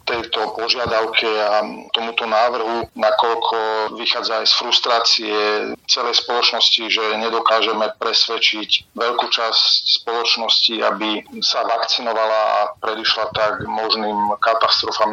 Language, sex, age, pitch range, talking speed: Slovak, male, 40-59, 110-115 Hz, 105 wpm